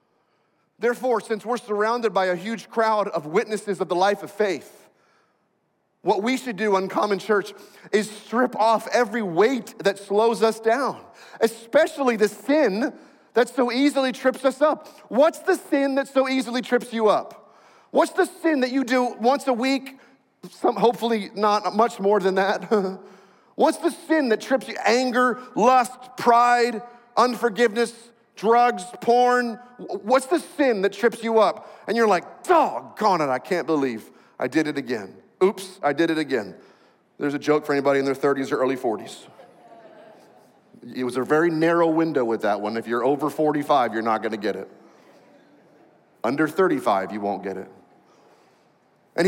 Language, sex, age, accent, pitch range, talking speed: English, male, 40-59, American, 180-250 Hz, 170 wpm